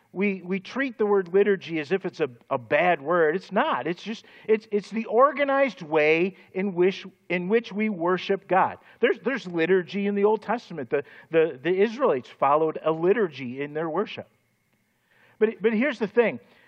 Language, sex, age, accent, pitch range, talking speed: English, male, 50-69, American, 160-205 Hz, 185 wpm